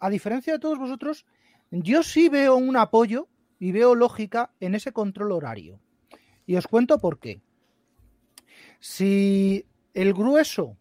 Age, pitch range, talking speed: 40-59, 185-270 Hz, 140 wpm